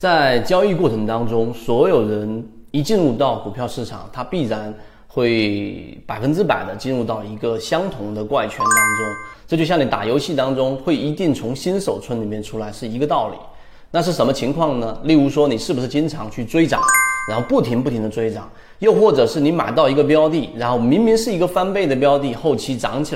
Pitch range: 115-150 Hz